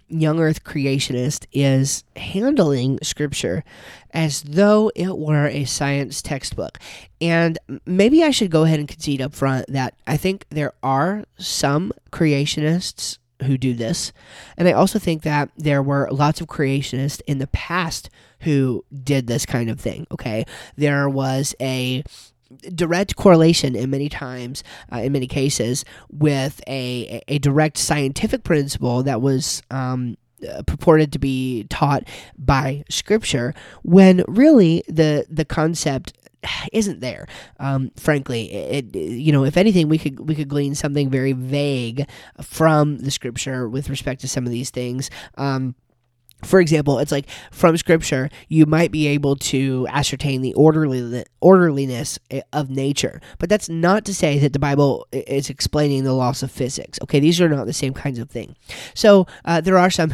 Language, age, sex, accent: English, 30-49, male, American